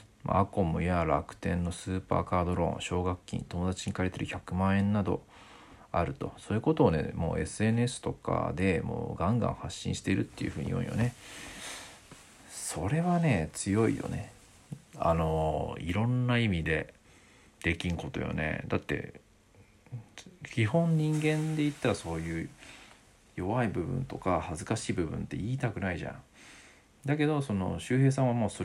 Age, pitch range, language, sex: 40-59, 90-130 Hz, Japanese, male